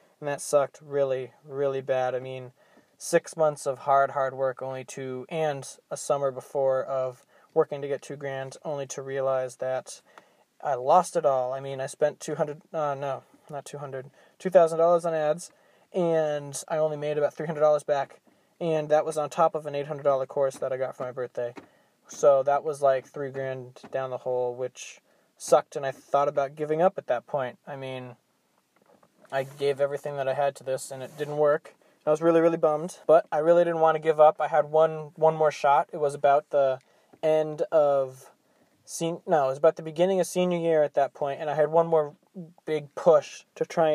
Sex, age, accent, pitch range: male, 20-39, American, 135-160 Hz